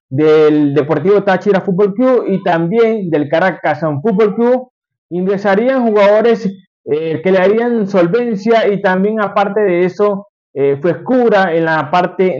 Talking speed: 135 wpm